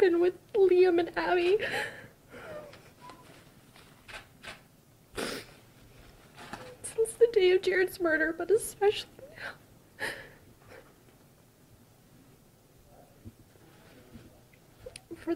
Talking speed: 60 wpm